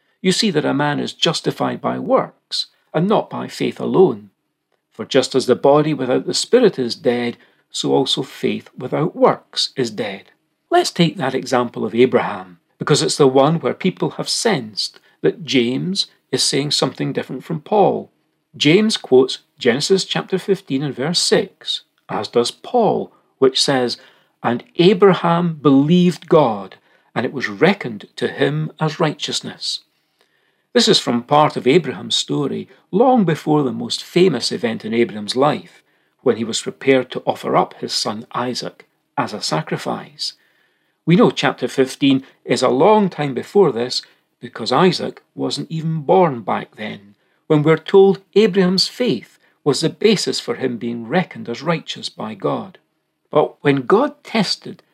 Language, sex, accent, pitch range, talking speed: English, male, British, 125-185 Hz, 155 wpm